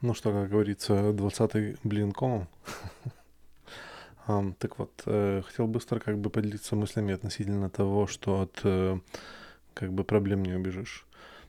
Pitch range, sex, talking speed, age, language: 95-110 Hz, male, 120 wpm, 20-39, Russian